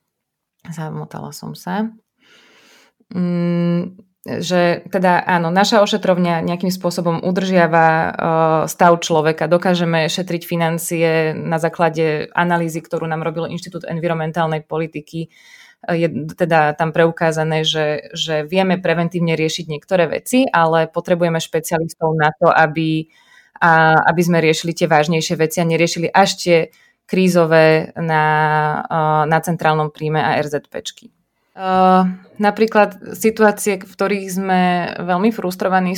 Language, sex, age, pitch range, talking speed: Slovak, female, 20-39, 165-185 Hz, 110 wpm